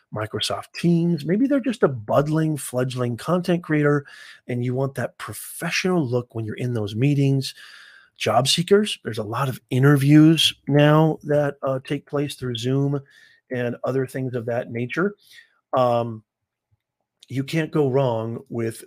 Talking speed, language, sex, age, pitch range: 150 wpm, English, male, 40-59, 115-155 Hz